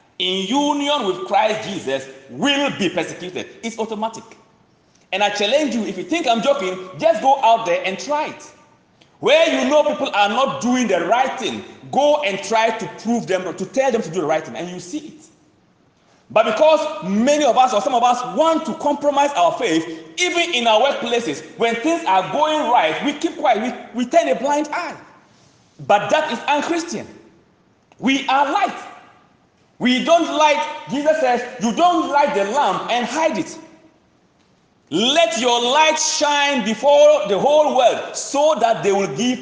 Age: 40-59